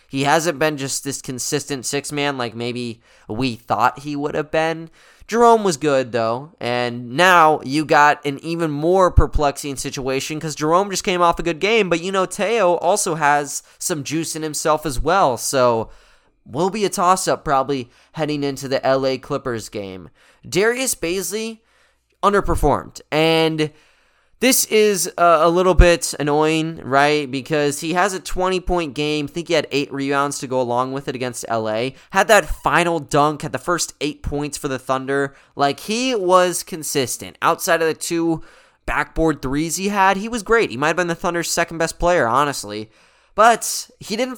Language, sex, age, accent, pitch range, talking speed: English, male, 20-39, American, 130-170 Hz, 175 wpm